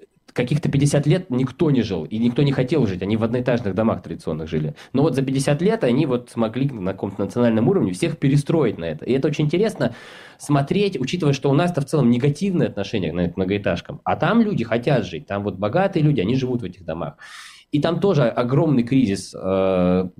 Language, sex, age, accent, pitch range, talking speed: Russian, male, 20-39, native, 105-145 Hz, 200 wpm